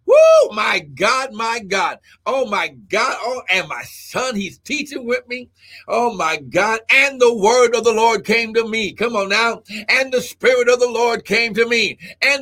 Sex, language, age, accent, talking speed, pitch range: male, English, 60-79, American, 195 wpm, 205-275 Hz